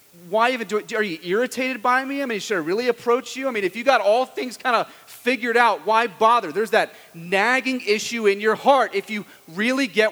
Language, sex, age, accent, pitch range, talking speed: English, male, 30-49, American, 140-200 Hz, 235 wpm